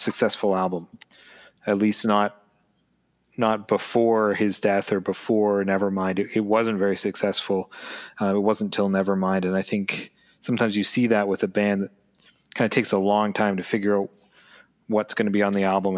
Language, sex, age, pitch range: English, male, 30-49, 100-120 Hz